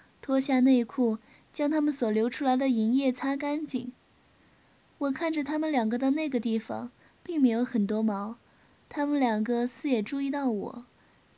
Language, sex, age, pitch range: Chinese, female, 20-39, 230-275 Hz